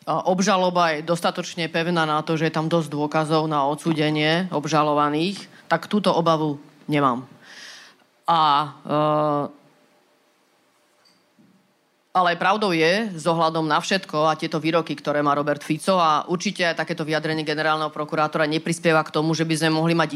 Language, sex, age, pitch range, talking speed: Slovak, female, 30-49, 155-190 Hz, 145 wpm